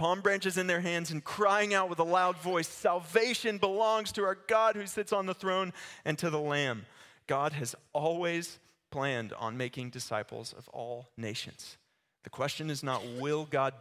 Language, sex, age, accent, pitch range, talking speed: English, male, 30-49, American, 115-160 Hz, 180 wpm